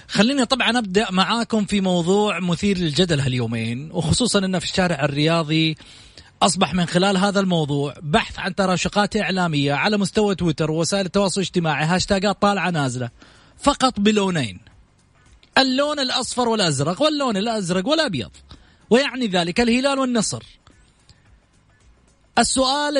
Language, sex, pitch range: English, male, 155-220 Hz